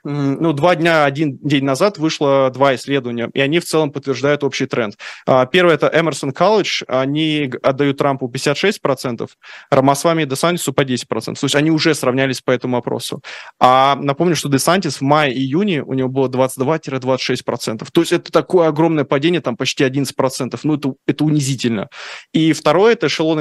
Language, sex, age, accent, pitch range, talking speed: Russian, male, 20-39, native, 135-160 Hz, 165 wpm